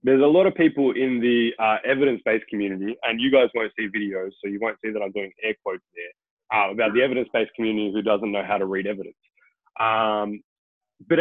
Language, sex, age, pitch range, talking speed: English, male, 20-39, 105-145 Hz, 215 wpm